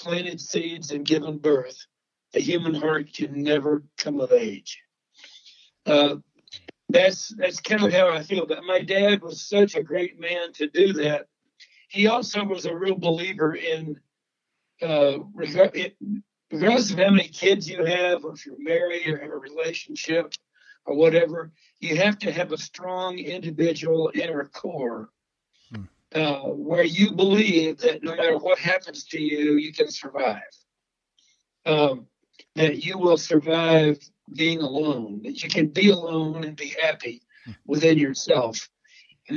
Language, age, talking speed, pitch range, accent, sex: English, 60-79, 150 wpm, 155-190 Hz, American, male